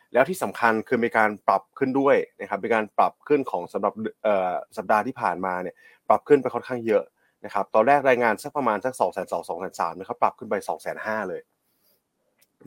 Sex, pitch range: male, 105-135 Hz